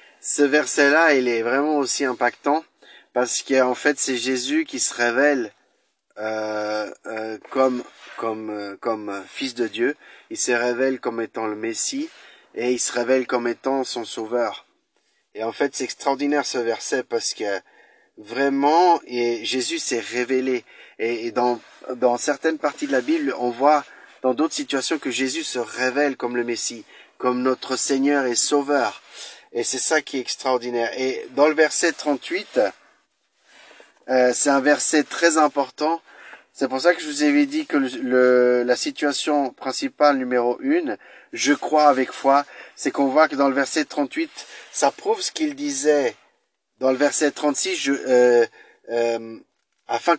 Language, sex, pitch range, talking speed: French, male, 120-155 Hz, 165 wpm